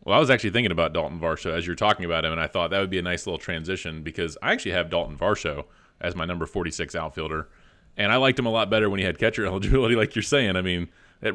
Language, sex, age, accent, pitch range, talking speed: English, male, 30-49, American, 85-105 Hz, 275 wpm